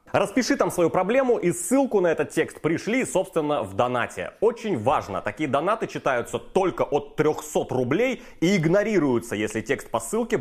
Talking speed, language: 160 wpm, Russian